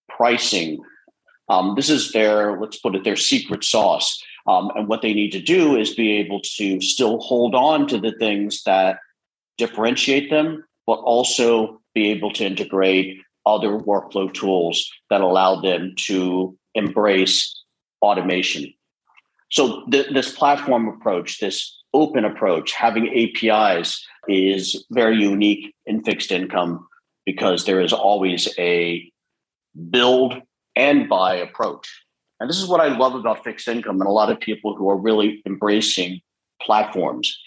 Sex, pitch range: male, 95-125 Hz